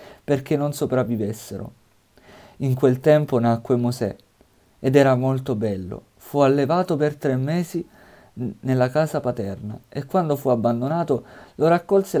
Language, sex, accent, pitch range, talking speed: Italian, male, native, 120-145 Hz, 130 wpm